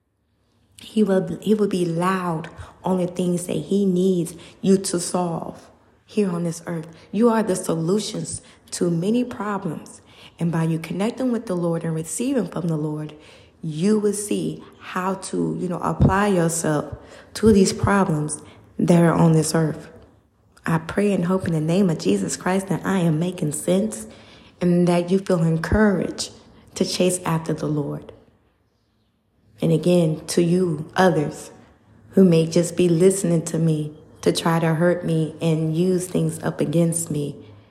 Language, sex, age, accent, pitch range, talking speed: English, female, 20-39, American, 150-185 Hz, 165 wpm